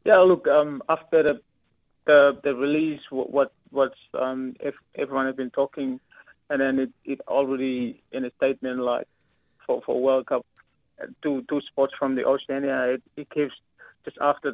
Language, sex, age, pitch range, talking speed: English, male, 20-39, 130-140 Hz, 175 wpm